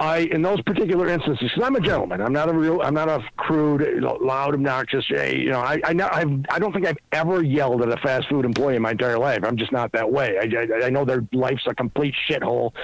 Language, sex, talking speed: English, male, 245 wpm